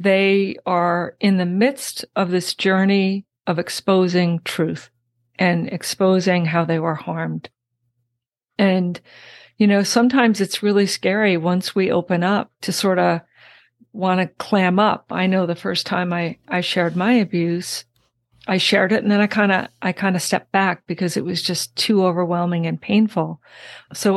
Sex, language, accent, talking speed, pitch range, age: female, English, American, 160 wpm, 170-205 Hz, 50-69